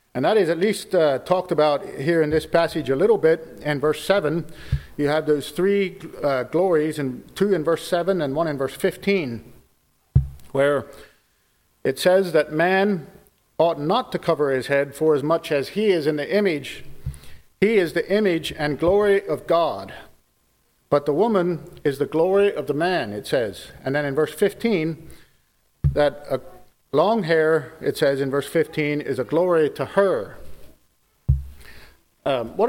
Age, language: 50-69, English